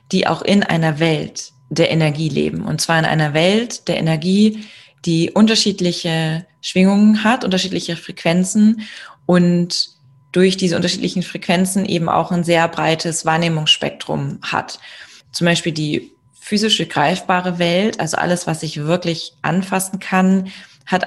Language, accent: German, German